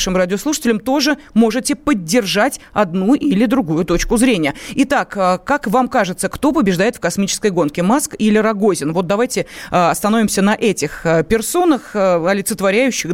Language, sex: Russian, female